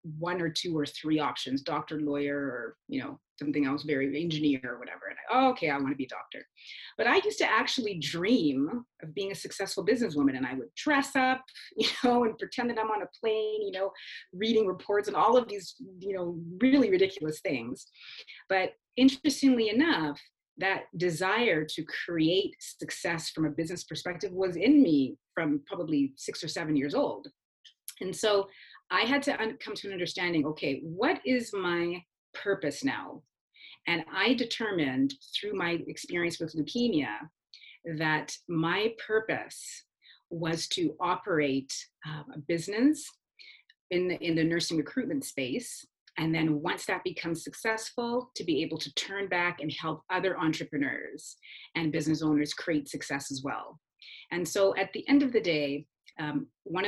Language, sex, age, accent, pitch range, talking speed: English, female, 30-49, American, 155-240 Hz, 165 wpm